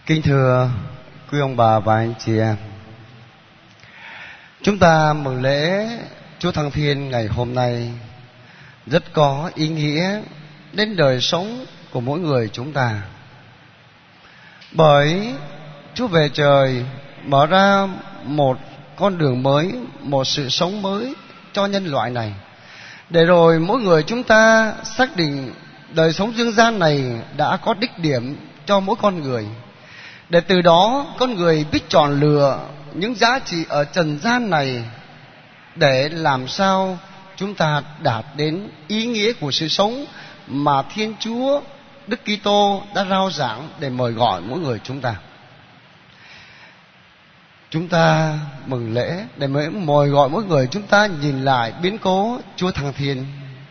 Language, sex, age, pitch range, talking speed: Vietnamese, male, 20-39, 135-190 Hz, 145 wpm